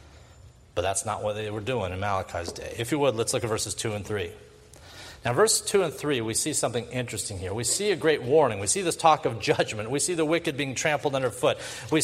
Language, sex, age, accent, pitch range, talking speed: English, male, 40-59, American, 120-195 Hz, 245 wpm